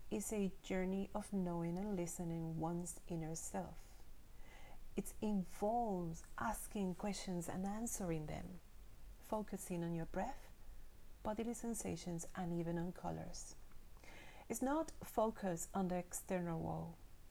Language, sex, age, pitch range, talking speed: English, female, 40-59, 170-210 Hz, 120 wpm